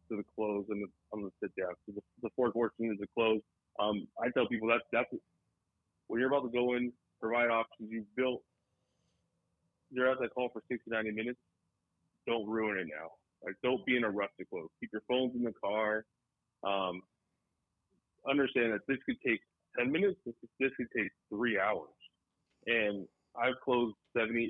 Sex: male